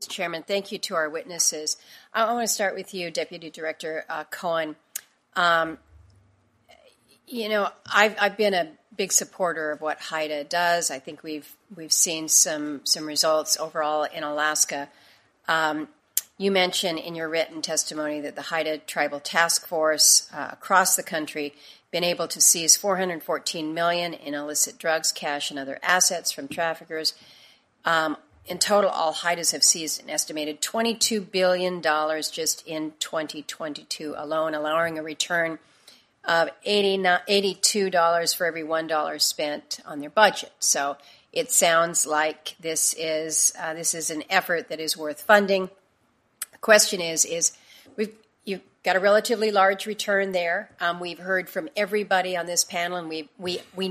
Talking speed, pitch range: 165 wpm, 155-190 Hz